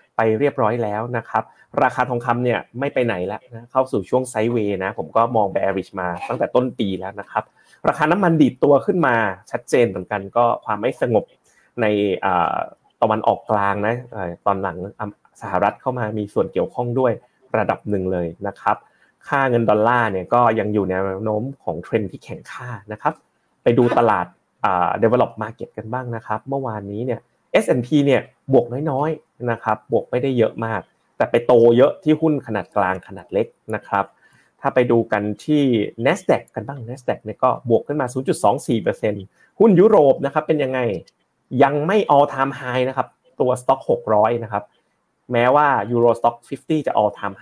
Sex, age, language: male, 30-49, Thai